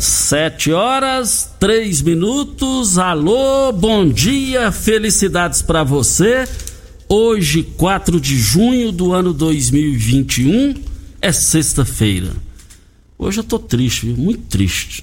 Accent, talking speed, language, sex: Brazilian, 105 wpm, Portuguese, male